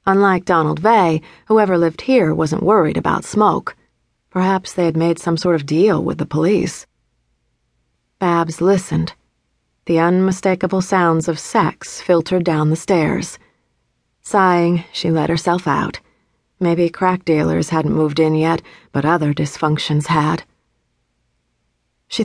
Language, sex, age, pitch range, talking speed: English, female, 40-59, 155-185 Hz, 130 wpm